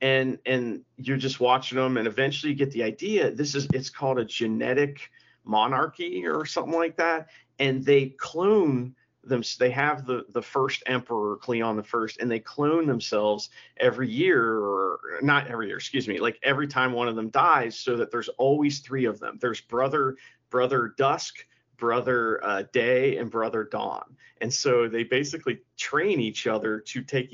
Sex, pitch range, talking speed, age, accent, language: male, 120-165 Hz, 180 wpm, 40-59, American, English